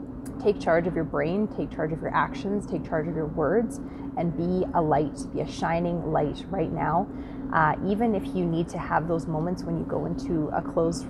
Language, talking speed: English, 215 wpm